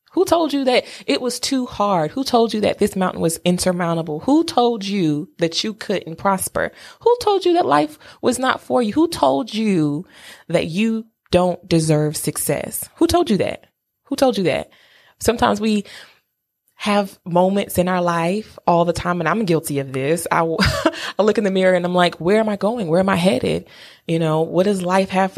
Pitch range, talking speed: 175-230 Hz, 205 wpm